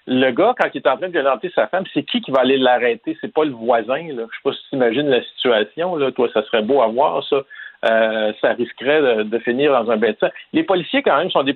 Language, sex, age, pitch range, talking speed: French, male, 50-69, 125-170 Hz, 280 wpm